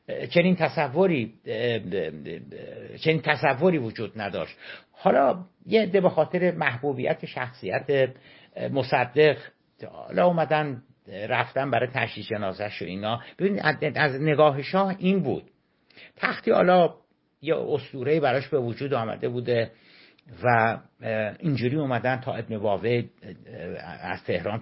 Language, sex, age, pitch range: Persian, male, 60-79, 120-170 Hz